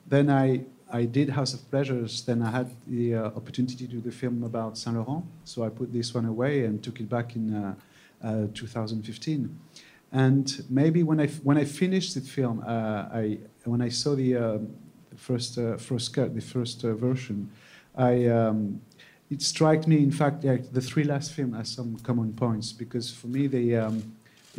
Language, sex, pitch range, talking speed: English, male, 115-130 Hz, 200 wpm